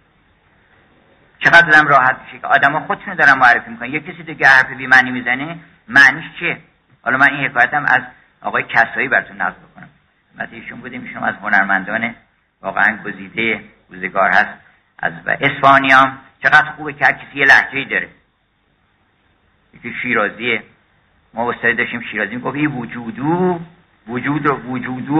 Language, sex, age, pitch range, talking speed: Persian, male, 50-69, 115-140 Hz, 140 wpm